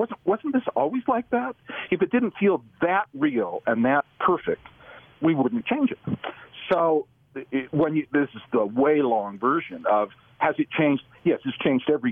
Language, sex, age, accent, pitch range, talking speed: English, male, 50-69, American, 125-185 Hz, 180 wpm